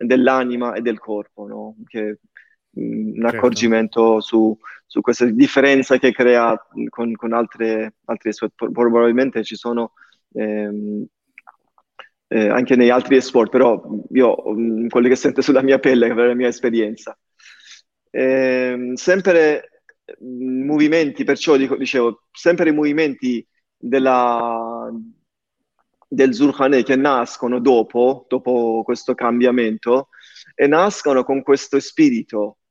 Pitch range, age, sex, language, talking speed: 115-135 Hz, 20-39, male, Italian, 115 wpm